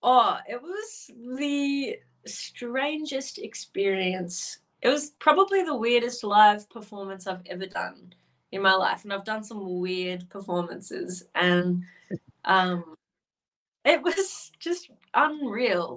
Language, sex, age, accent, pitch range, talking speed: English, female, 20-39, Australian, 180-225 Hz, 115 wpm